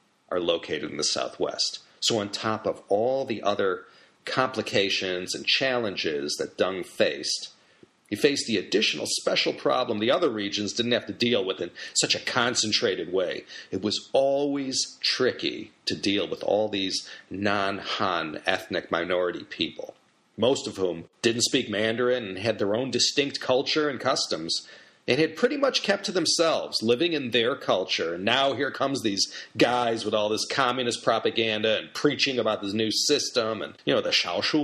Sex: male